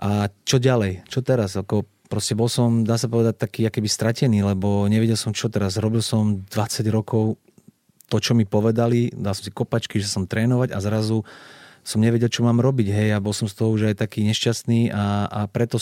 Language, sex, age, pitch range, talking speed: Slovak, male, 30-49, 105-120 Hz, 210 wpm